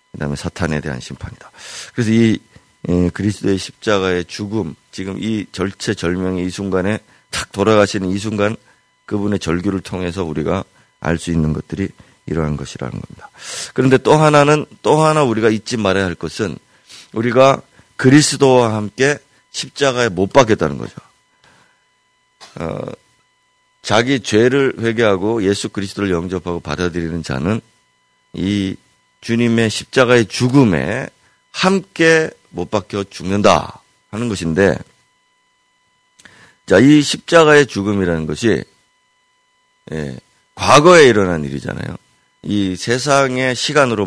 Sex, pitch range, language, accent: male, 90-135 Hz, Korean, native